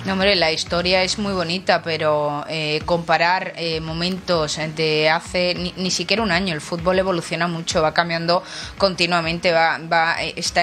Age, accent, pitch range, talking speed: 20-39, Spanish, 170-190 Hz, 165 wpm